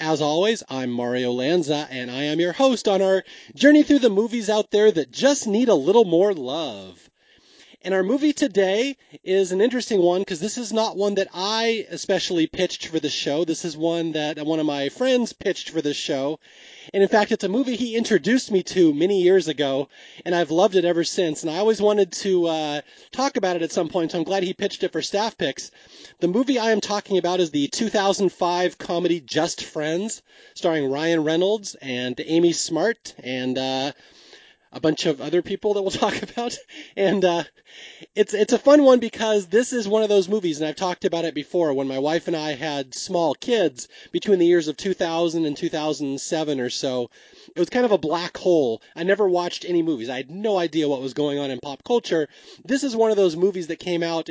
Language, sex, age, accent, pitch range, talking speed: English, male, 30-49, American, 155-215 Hz, 215 wpm